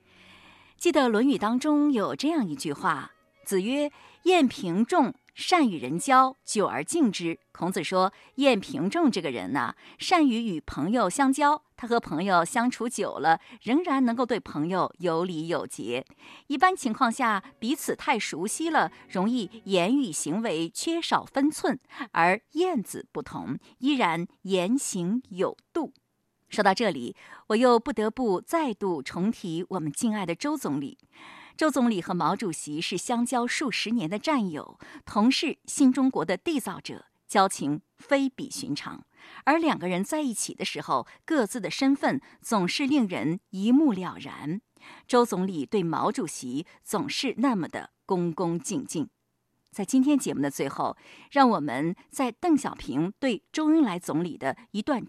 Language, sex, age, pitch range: Chinese, female, 50-69, 185-285 Hz